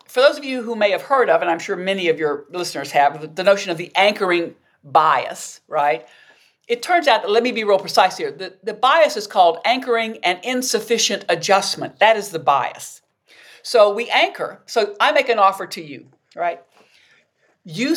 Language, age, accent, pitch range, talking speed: English, 60-79, American, 185-250 Hz, 195 wpm